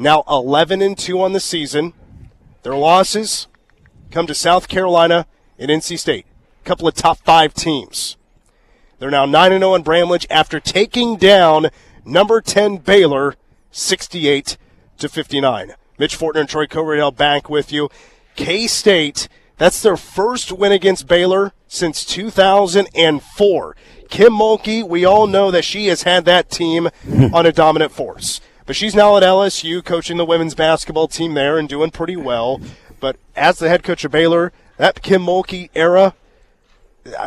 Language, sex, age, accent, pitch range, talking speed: English, male, 30-49, American, 155-195 Hz, 165 wpm